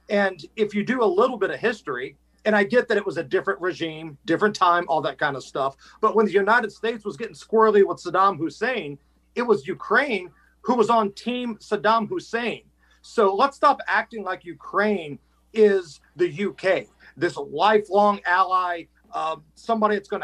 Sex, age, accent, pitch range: male, 40-59, American, 170-220 Hz